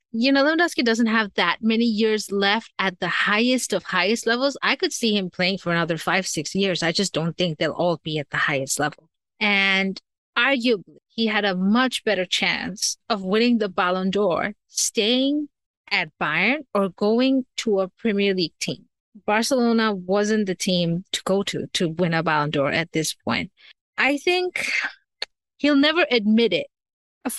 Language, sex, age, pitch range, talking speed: English, female, 30-49, 180-230 Hz, 180 wpm